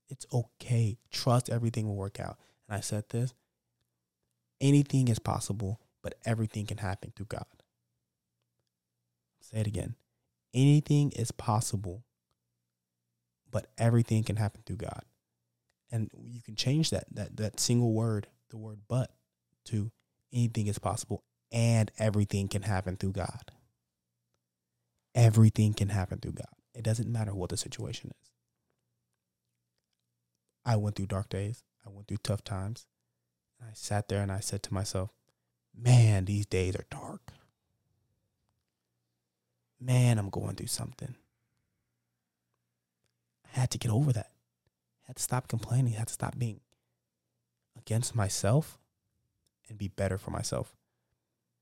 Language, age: English, 20-39